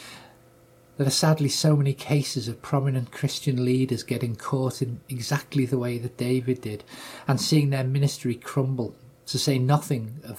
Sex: male